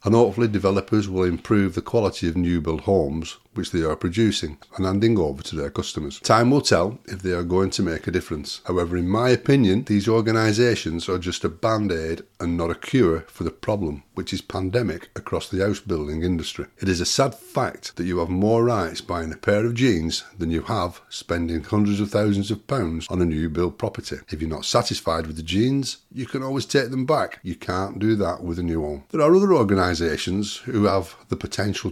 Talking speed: 215 wpm